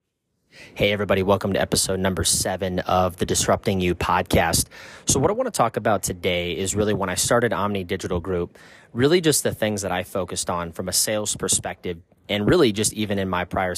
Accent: American